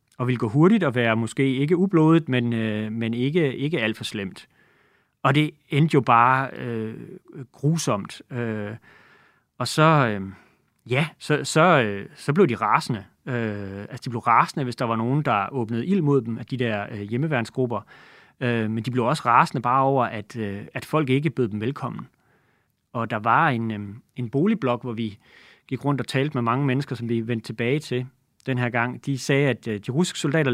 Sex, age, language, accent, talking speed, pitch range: male, 30-49, Danish, native, 200 wpm, 115-140 Hz